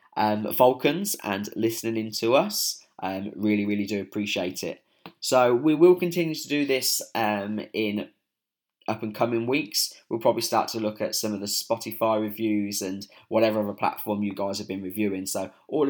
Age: 20-39